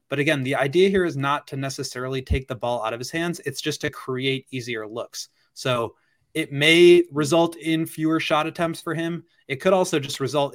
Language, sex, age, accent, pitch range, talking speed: English, male, 20-39, American, 120-145 Hz, 210 wpm